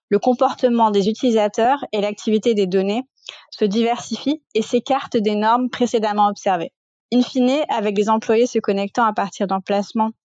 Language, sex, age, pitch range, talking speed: French, female, 20-39, 210-250 Hz, 150 wpm